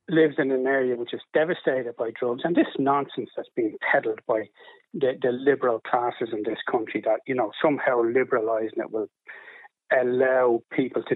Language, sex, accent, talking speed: English, male, British, 175 wpm